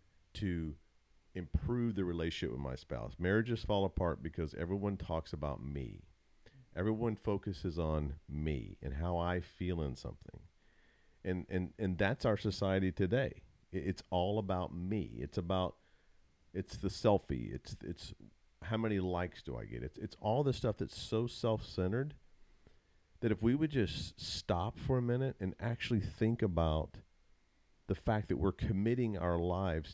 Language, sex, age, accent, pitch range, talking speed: English, male, 50-69, American, 85-105 Hz, 150 wpm